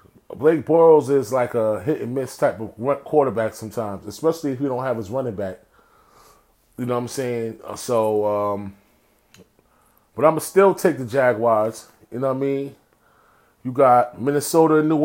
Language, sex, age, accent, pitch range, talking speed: English, male, 30-49, American, 125-150 Hz, 170 wpm